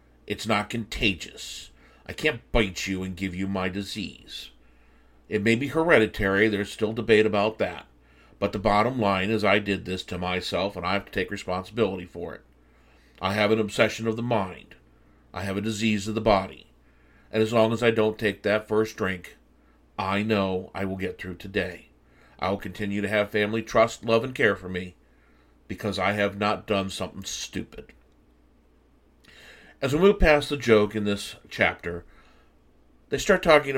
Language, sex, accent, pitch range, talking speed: English, male, American, 90-115 Hz, 180 wpm